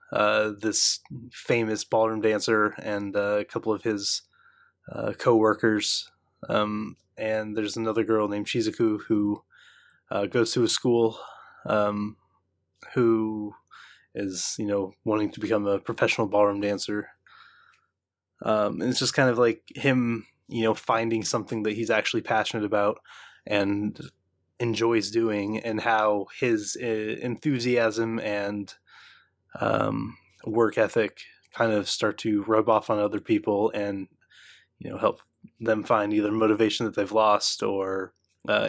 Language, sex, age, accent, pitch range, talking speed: English, male, 20-39, American, 105-115 Hz, 140 wpm